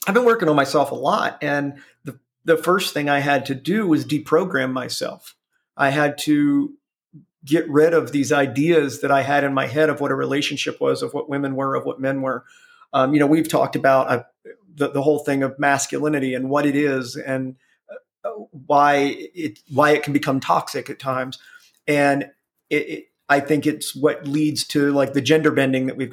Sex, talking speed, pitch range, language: male, 200 wpm, 140-170 Hz, English